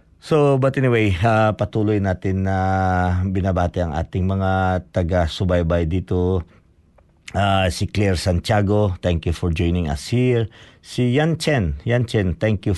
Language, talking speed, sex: Filipino, 145 wpm, male